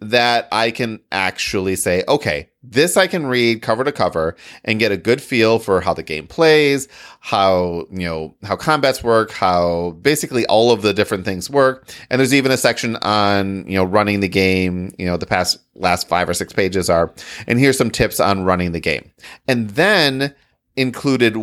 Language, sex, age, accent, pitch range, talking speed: English, male, 30-49, American, 95-130 Hz, 195 wpm